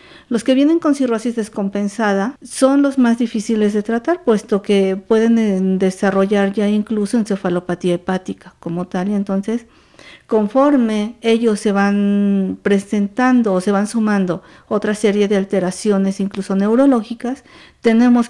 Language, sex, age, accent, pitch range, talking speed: Spanish, female, 50-69, American, 195-230 Hz, 130 wpm